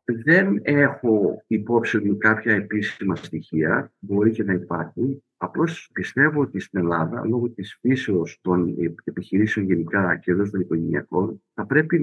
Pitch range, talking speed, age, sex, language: 100-135 Hz, 135 wpm, 50-69, male, Greek